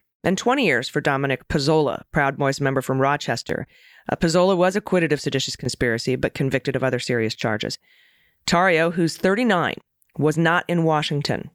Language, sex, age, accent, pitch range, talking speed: English, female, 30-49, American, 135-170 Hz, 160 wpm